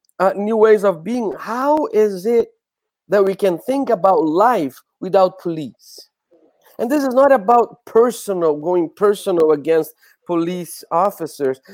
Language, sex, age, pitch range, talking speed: English, male, 50-69, 165-215 Hz, 140 wpm